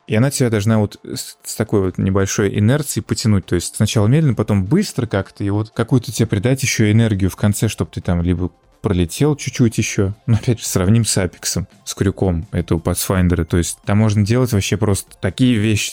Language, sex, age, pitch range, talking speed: Russian, male, 20-39, 95-115 Hz, 200 wpm